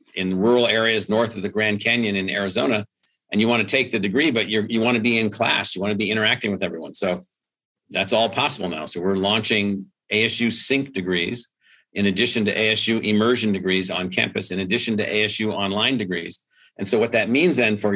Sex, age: male, 50-69